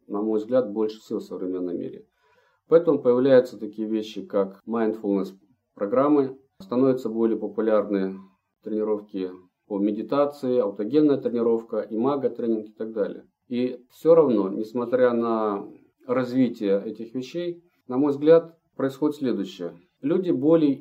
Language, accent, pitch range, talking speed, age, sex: Russian, native, 105-135 Hz, 125 wpm, 40-59, male